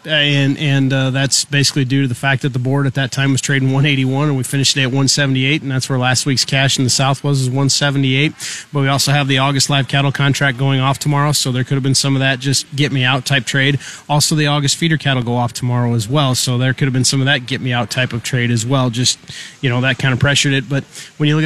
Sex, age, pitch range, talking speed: male, 30-49, 135-145 Hz, 280 wpm